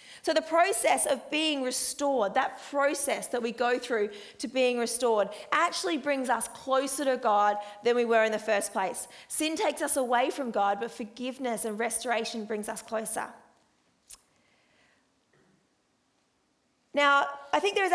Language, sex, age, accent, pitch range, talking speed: English, female, 30-49, Australian, 225-280 Hz, 155 wpm